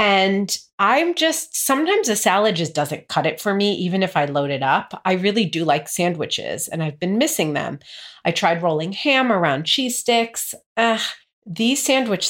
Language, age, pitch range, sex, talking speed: English, 30-49, 155-225 Hz, female, 180 wpm